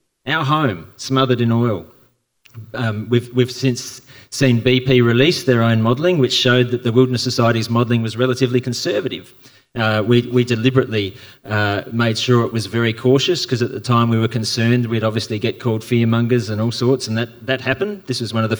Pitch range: 115-130 Hz